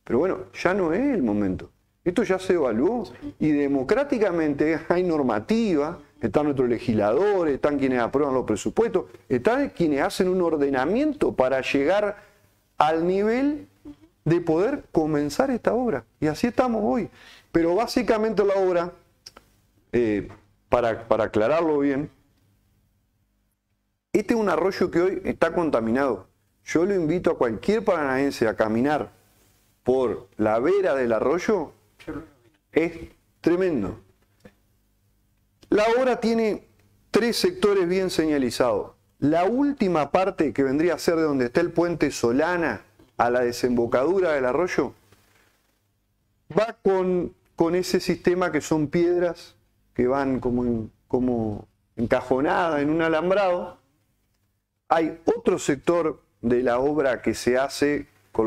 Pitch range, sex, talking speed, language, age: 110-185 Hz, male, 125 wpm, Spanish, 40-59